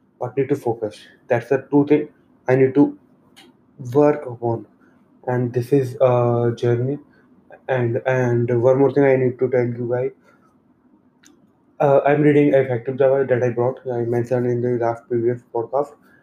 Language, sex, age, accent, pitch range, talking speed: English, male, 20-39, Indian, 120-135 Hz, 165 wpm